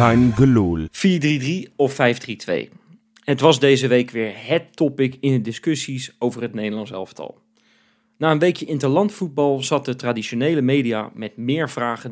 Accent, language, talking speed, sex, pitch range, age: Dutch, Dutch, 140 wpm, male, 125-160 Hz, 40-59